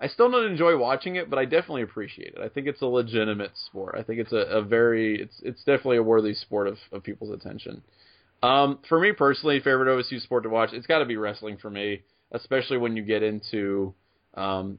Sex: male